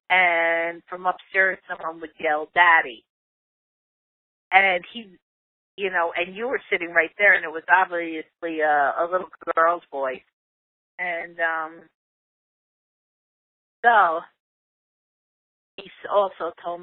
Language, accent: English, American